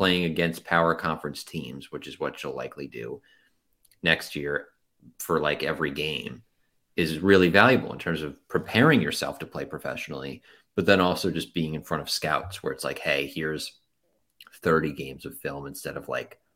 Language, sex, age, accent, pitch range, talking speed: English, male, 30-49, American, 80-100 Hz, 180 wpm